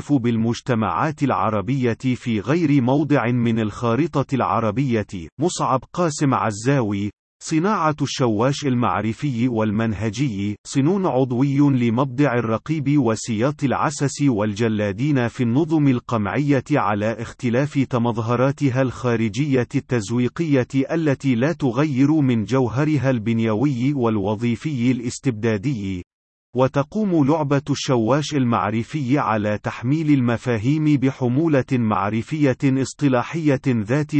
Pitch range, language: 115-145 Hz, Arabic